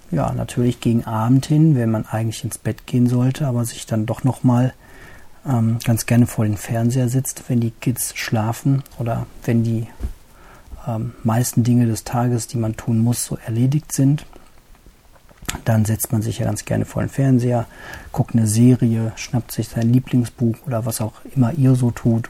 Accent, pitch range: German, 110-125 Hz